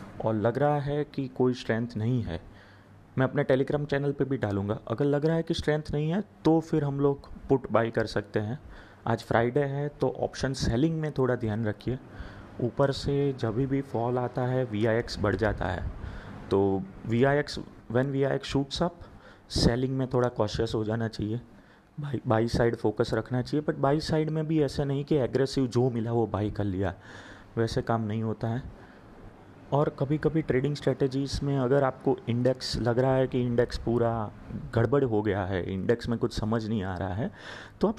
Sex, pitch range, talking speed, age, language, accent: male, 105-140 Hz, 195 wpm, 30-49, Hindi, native